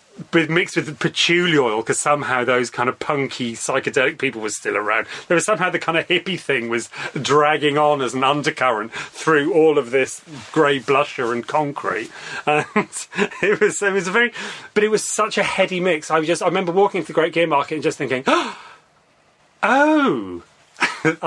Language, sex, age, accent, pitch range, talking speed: English, male, 30-49, British, 145-190 Hz, 190 wpm